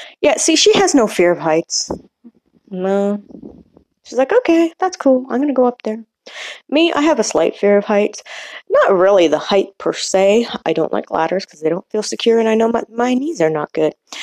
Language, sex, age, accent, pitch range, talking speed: English, female, 20-39, American, 170-245 Hz, 220 wpm